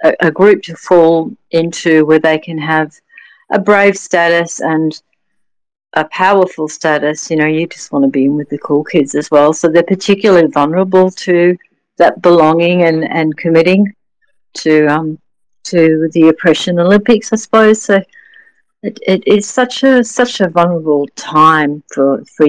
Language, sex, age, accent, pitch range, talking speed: English, female, 50-69, Australian, 160-215 Hz, 160 wpm